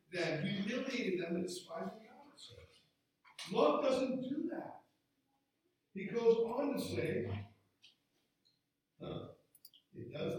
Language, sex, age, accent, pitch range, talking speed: English, male, 50-69, American, 165-270 Hz, 105 wpm